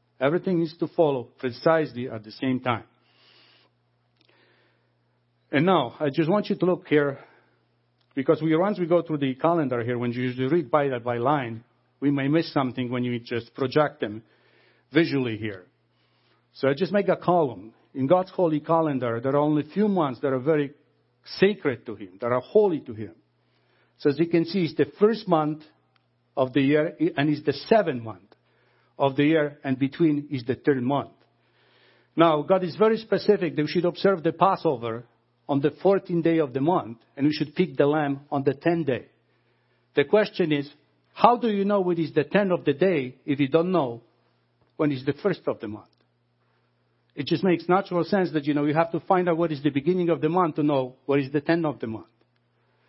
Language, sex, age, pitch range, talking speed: English, male, 50-69, 125-170 Hz, 205 wpm